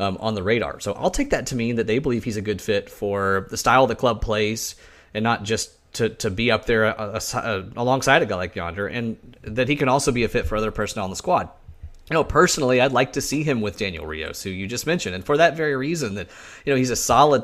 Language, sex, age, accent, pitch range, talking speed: English, male, 30-49, American, 100-125 Hz, 270 wpm